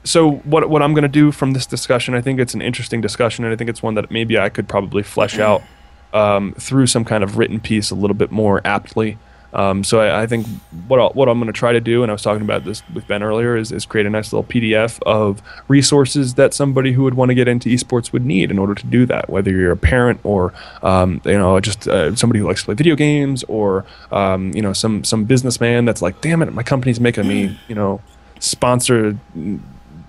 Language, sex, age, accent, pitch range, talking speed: English, male, 10-29, American, 100-125 Hz, 245 wpm